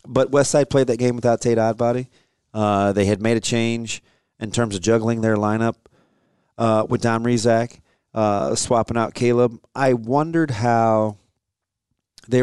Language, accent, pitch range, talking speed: English, American, 105-130 Hz, 160 wpm